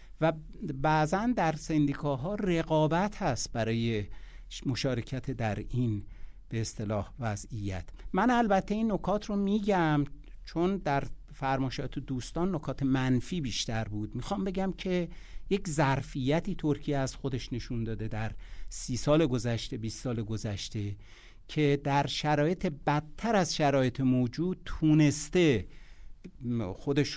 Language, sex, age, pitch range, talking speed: Persian, male, 60-79, 120-165 Hz, 115 wpm